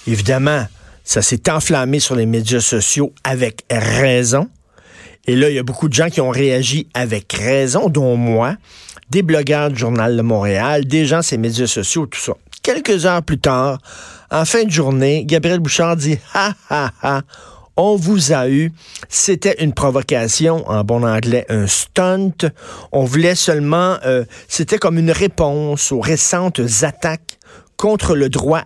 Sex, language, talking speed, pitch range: male, French, 165 wpm, 120-165 Hz